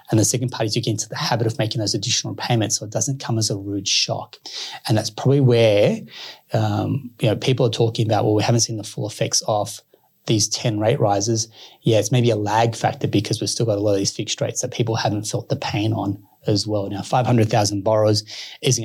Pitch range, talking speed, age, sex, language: 105-125 Hz, 240 wpm, 20-39, male, English